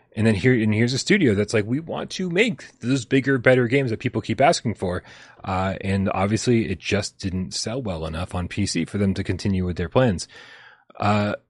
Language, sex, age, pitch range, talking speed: English, male, 30-49, 90-115 Hz, 215 wpm